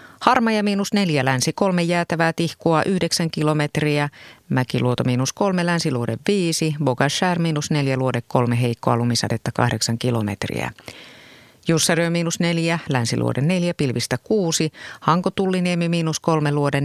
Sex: female